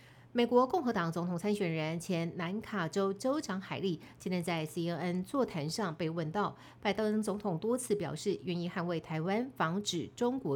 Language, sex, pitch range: Chinese, female, 175-225 Hz